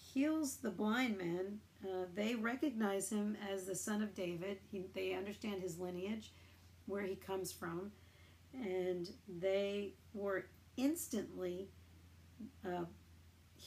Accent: American